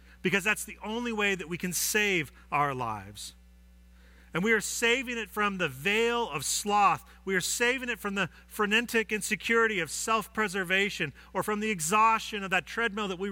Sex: male